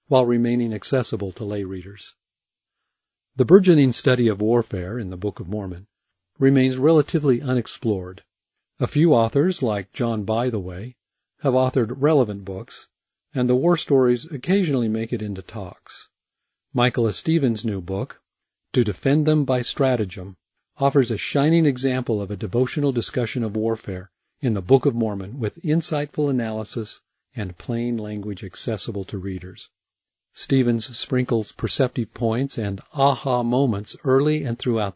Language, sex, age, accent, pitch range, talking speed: English, male, 40-59, American, 105-135 Hz, 140 wpm